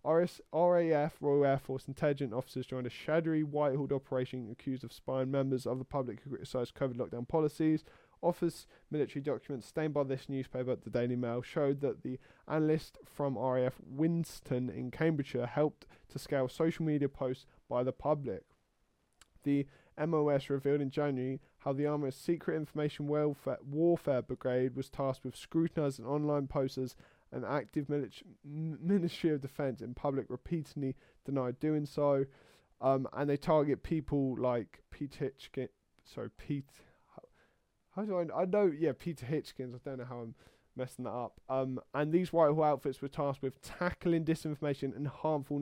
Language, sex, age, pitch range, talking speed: English, male, 20-39, 130-150 Hz, 160 wpm